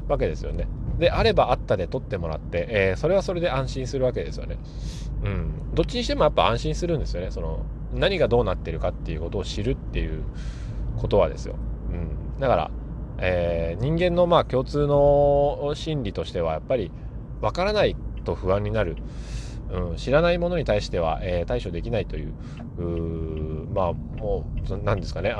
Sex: male